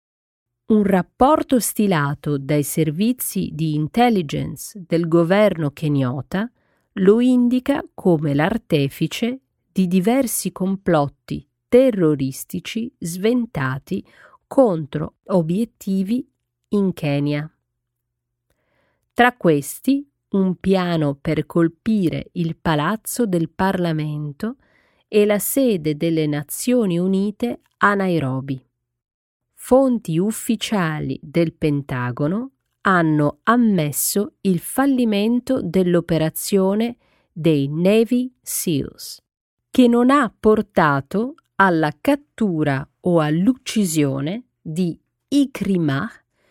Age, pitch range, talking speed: 40-59, 155-225 Hz, 80 wpm